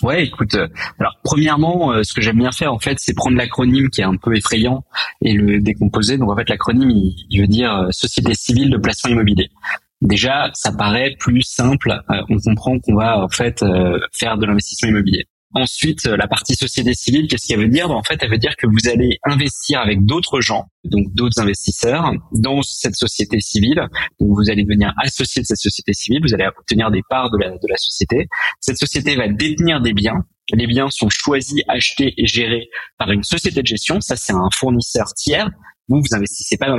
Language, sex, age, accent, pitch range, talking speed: French, male, 20-39, French, 105-135 Hz, 200 wpm